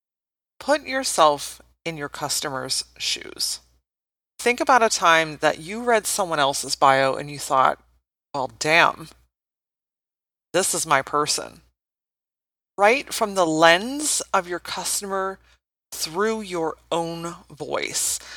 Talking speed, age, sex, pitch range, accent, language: 120 wpm, 30-49, female, 135-210 Hz, American, English